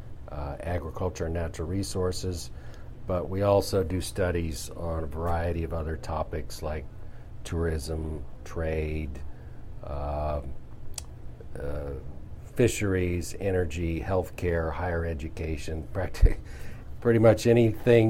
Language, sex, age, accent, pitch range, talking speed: English, male, 40-59, American, 85-105 Hz, 105 wpm